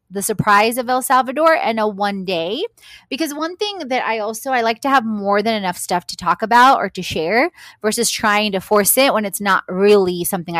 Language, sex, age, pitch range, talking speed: English, female, 20-39, 190-260 Hz, 220 wpm